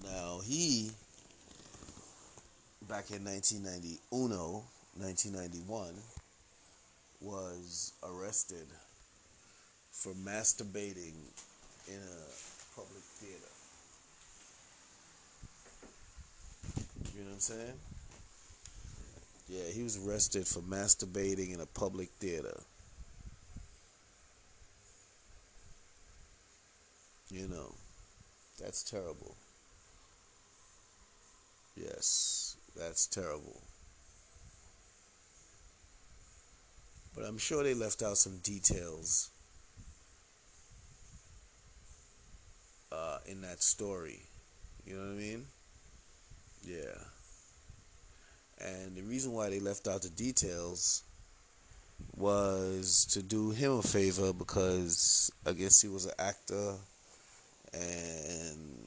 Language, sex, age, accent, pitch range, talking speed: English, male, 30-49, American, 85-100 Hz, 80 wpm